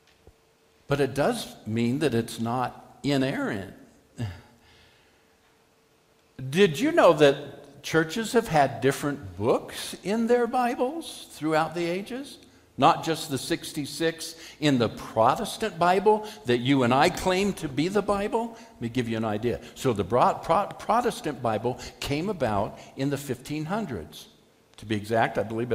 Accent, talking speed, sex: American, 140 wpm, male